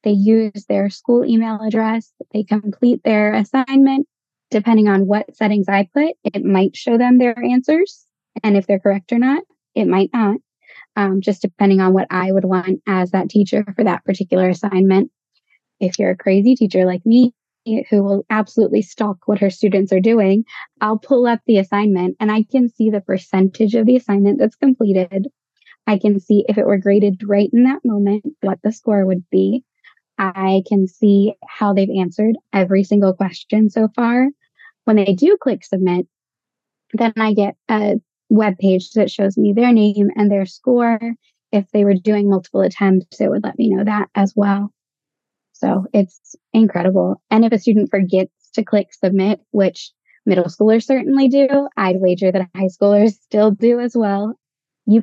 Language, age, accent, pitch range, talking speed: English, 20-39, American, 195-230 Hz, 180 wpm